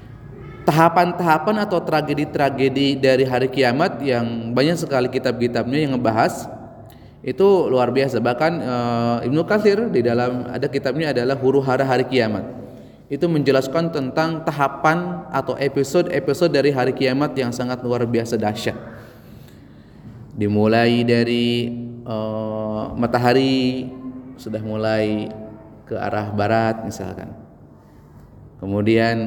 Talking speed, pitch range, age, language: 105 wpm, 115-140 Hz, 20-39, Indonesian